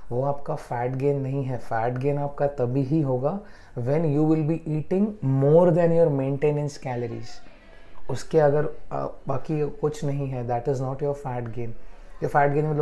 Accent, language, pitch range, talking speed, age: Indian, English, 130-150 Hz, 120 wpm, 30-49